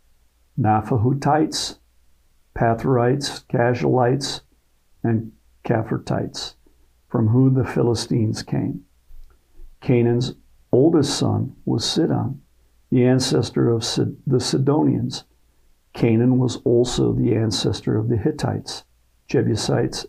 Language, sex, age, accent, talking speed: English, male, 50-69, American, 85 wpm